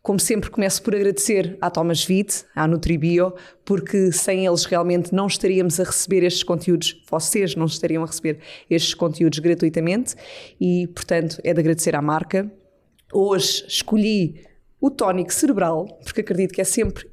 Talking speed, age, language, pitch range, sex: 160 wpm, 20-39, Portuguese, 170-205 Hz, female